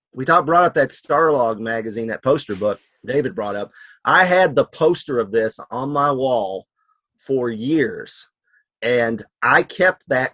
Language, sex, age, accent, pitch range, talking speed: English, male, 40-59, American, 115-150 Hz, 165 wpm